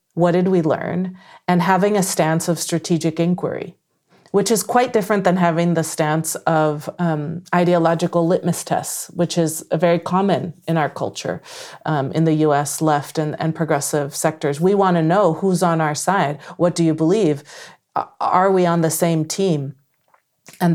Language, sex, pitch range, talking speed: English, female, 160-185 Hz, 175 wpm